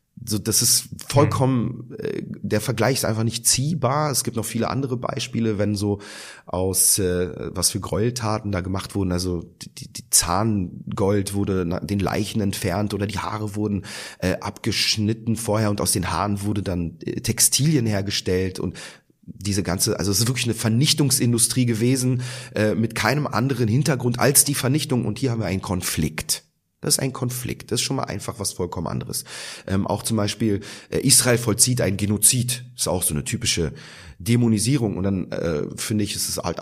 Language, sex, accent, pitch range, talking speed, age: German, male, German, 100-130 Hz, 180 wpm, 30-49